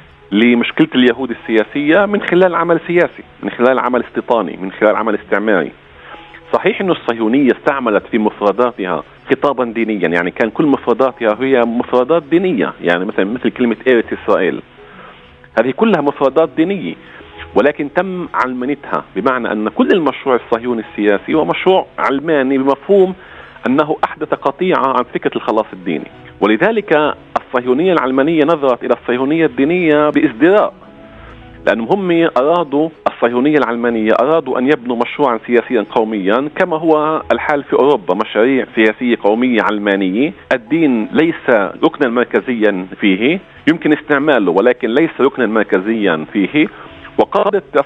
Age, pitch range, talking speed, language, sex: 40-59, 115-165 Hz, 125 wpm, Arabic, male